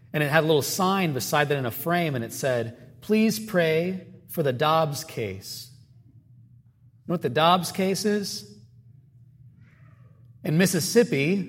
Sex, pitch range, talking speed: male, 130-180 Hz, 150 wpm